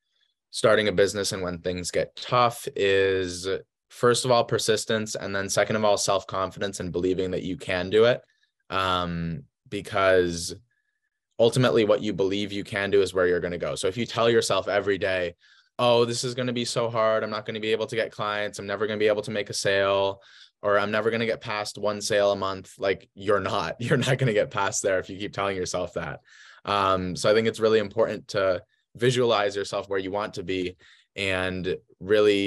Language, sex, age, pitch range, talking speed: English, male, 20-39, 95-125 Hz, 220 wpm